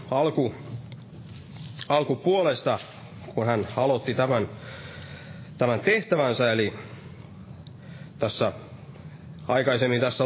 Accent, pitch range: native, 115-145 Hz